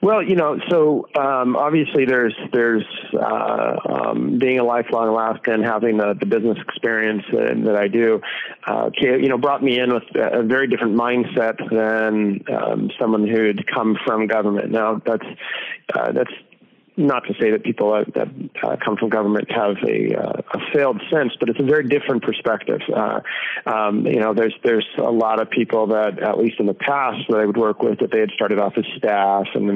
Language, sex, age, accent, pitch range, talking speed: English, male, 30-49, American, 110-120 Hz, 200 wpm